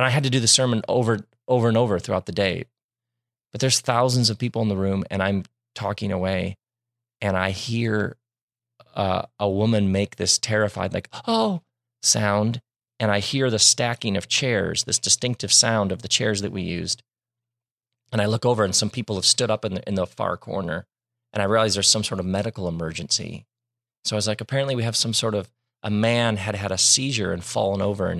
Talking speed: 210 wpm